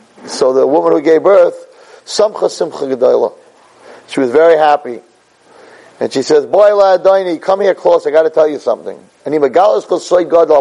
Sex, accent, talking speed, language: male, American, 145 wpm, English